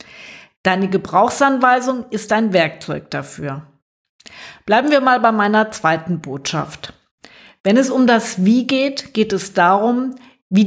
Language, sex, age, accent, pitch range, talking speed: German, female, 50-69, German, 180-240 Hz, 130 wpm